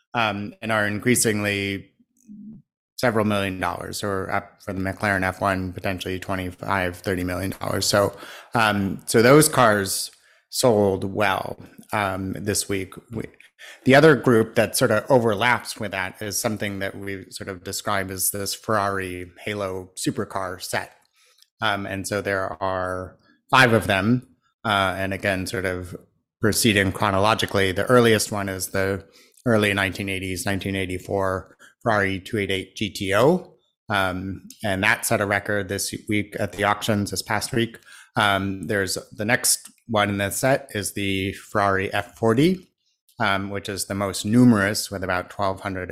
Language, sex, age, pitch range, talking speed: English, male, 30-49, 95-110 Hz, 145 wpm